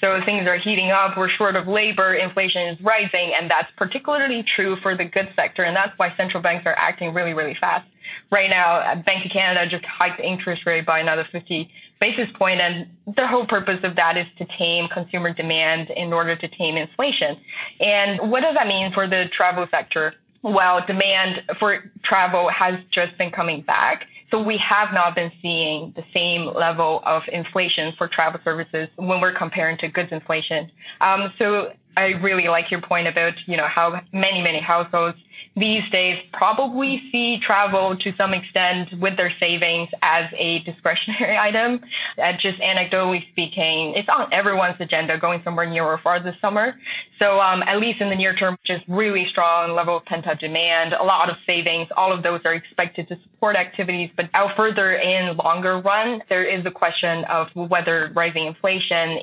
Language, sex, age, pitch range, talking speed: English, female, 20-39, 170-195 Hz, 185 wpm